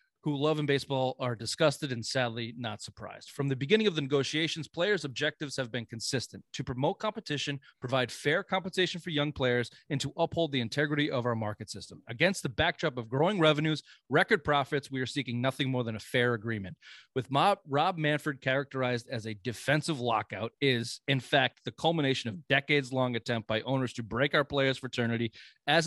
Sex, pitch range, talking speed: male, 115-145 Hz, 190 wpm